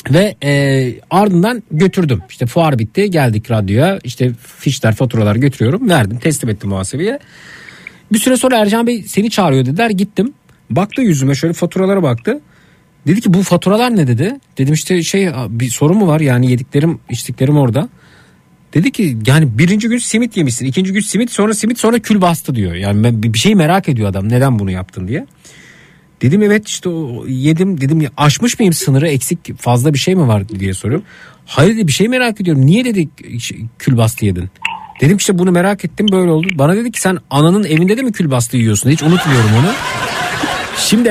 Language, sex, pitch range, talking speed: Turkish, male, 130-195 Hz, 175 wpm